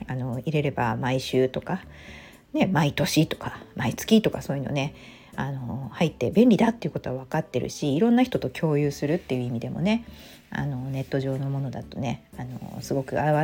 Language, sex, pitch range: Japanese, female, 130-185 Hz